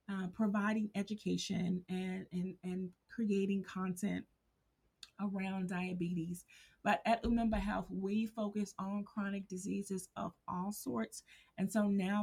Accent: American